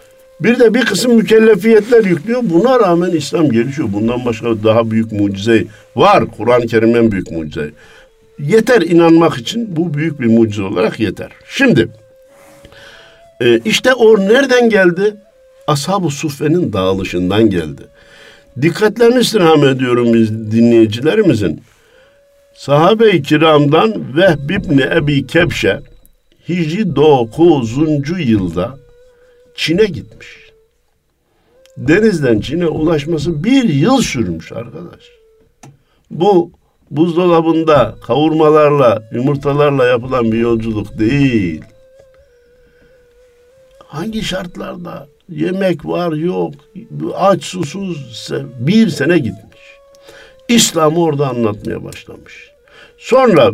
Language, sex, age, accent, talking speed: Turkish, male, 50-69, native, 95 wpm